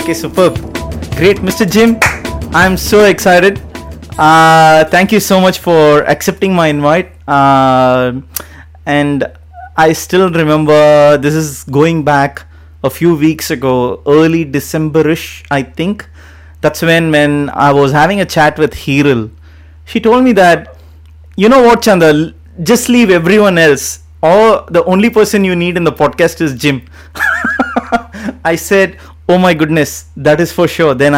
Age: 30-49